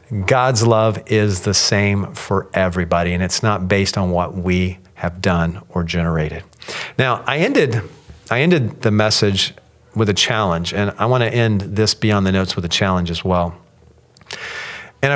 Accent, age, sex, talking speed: American, 40-59, male, 170 wpm